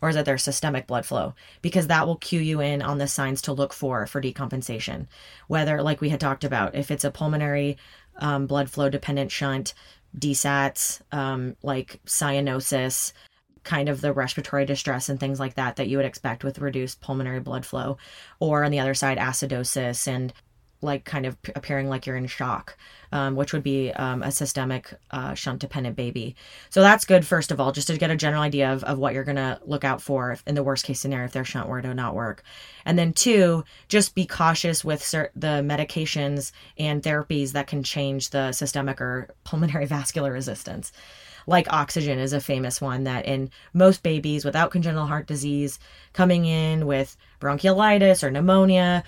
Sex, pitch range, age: female, 135-150 Hz, 20-39